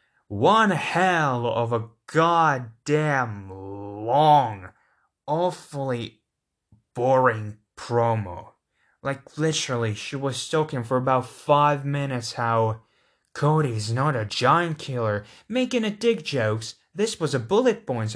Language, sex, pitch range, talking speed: English, male, 120-190 Hz, 110 wpm